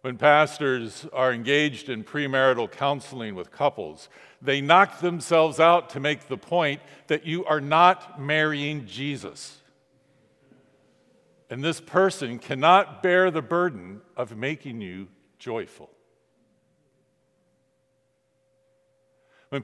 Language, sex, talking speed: English, male, 105 wpm